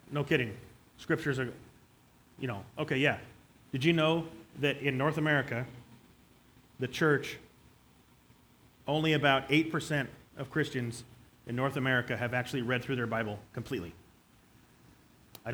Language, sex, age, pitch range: English, male, 30-49, 120-140 Hz